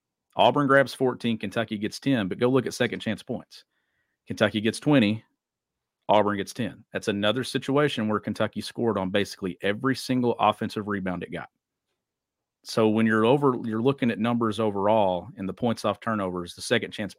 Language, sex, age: English, male, 40-59